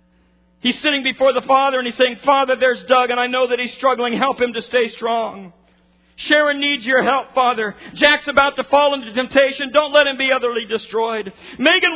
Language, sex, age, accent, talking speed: English, male, 50-69, American, 200 wpm